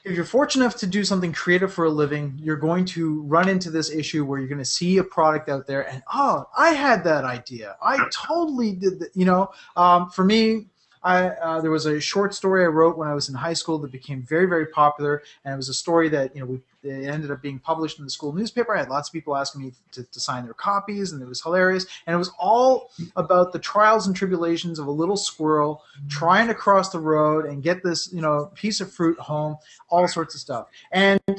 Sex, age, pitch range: male, 30-49, 155-195 Hz